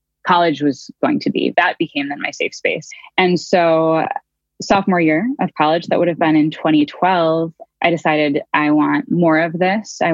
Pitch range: 155-195 Hz